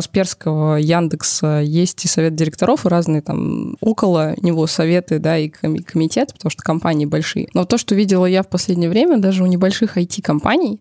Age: 20-39